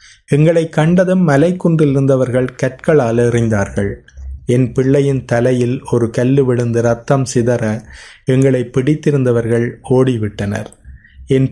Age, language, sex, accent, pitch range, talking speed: 30-49, Tamil, male, native, 110-135 Hz, 100 wpm